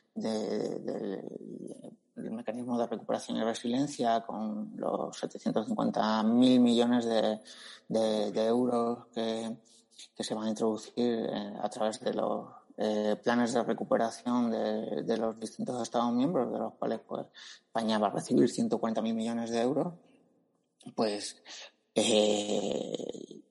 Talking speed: 125 wpm